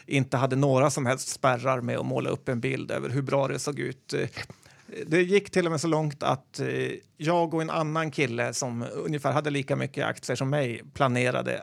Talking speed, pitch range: 205 wpm, 130-155 Hz